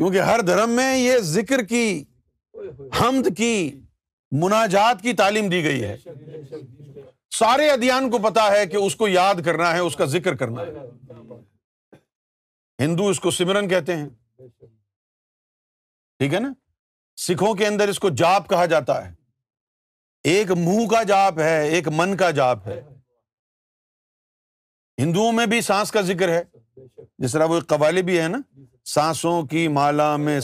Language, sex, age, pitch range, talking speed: Urdu, male, 50-69, 125-205 Hz, 150 wpm